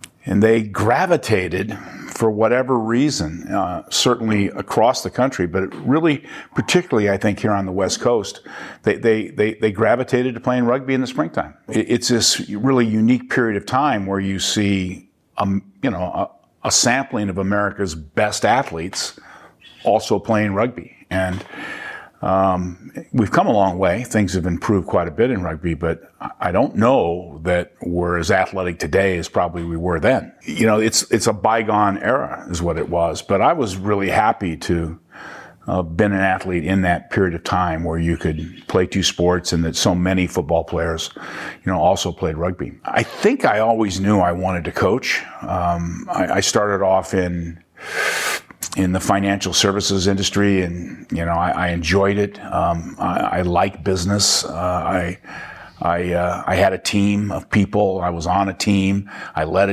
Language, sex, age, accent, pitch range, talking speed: English, male, 50-69, American, 90-105 Hz, 180 wpm